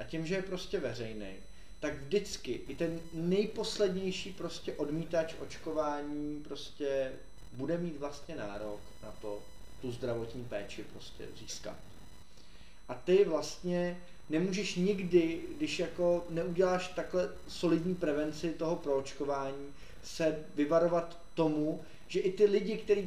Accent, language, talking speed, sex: native, Czech, 125 wpm, male